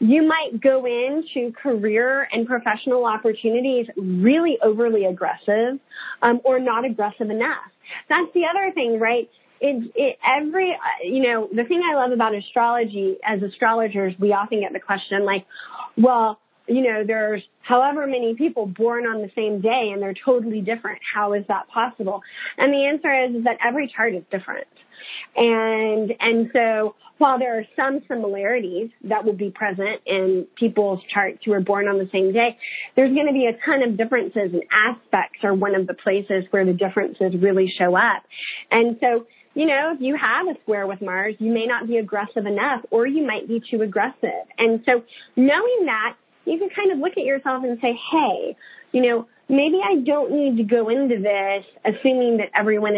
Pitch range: 210-265 Hz